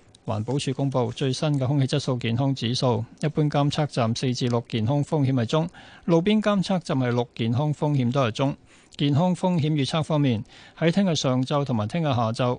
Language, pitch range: Chinese, 120-160 Hz